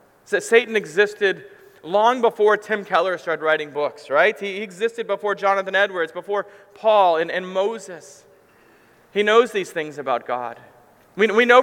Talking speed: 150 wpm